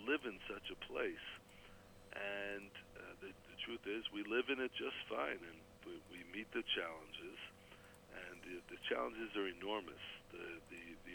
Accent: American